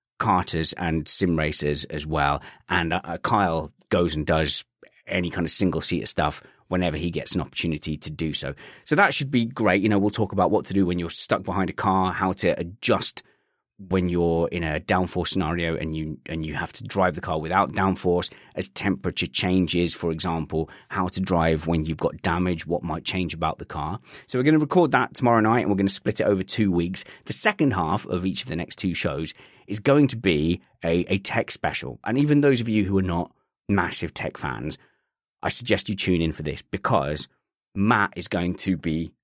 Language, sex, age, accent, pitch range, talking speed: English, male, 30-49, British, 85-105 Hz, 215 wpm